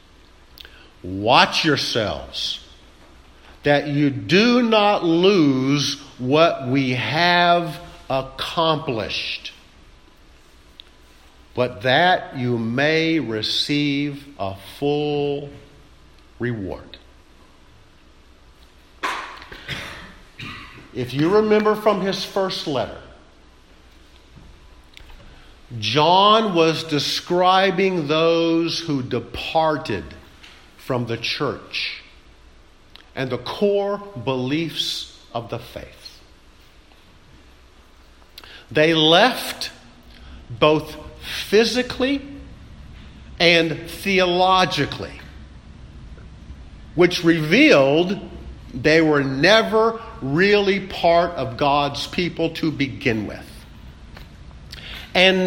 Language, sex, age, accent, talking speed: English, male, 50-69, American, 65 wpm